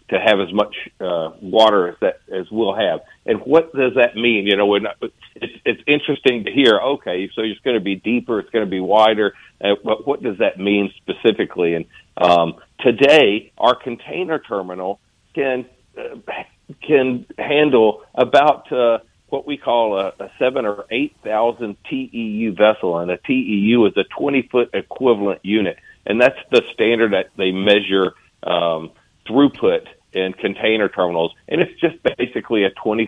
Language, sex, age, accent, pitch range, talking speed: English, male, 50-69, American, 100-140 Hz, 165 wpm